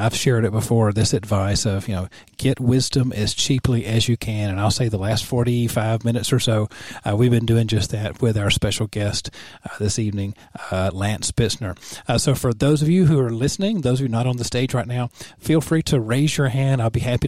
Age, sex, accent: 40-59, male, American